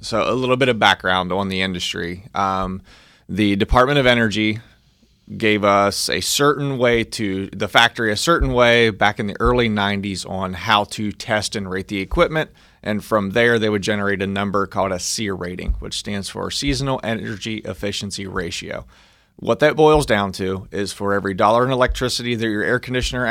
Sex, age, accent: male, 30-49, American